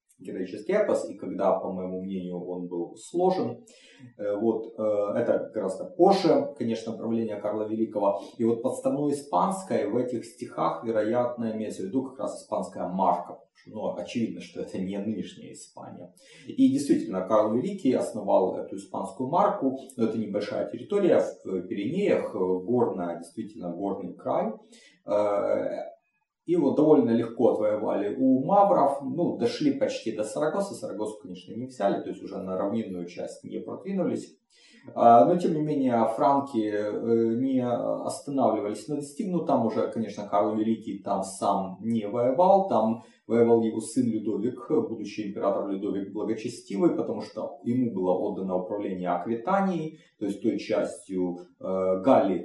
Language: Russian